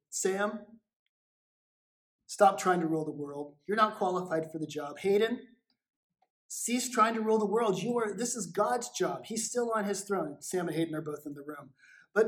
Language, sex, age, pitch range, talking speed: English, male, 30-49, 165-205 Hz, 195 wpm